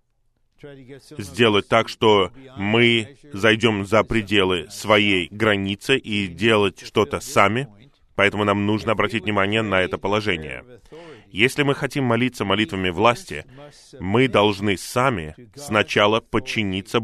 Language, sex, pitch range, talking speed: Russian, male, 100-125 Hz, 115 wpm